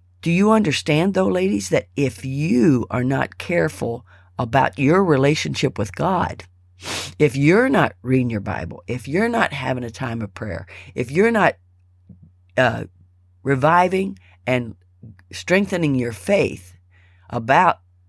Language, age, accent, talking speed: English, 50-69, American, 135 wpm